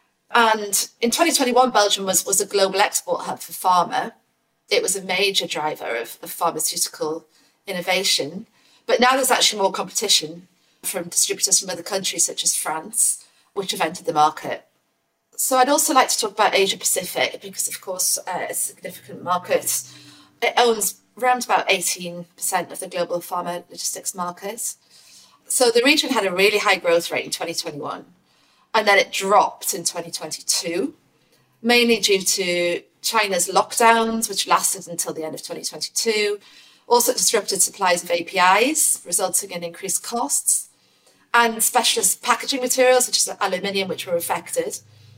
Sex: female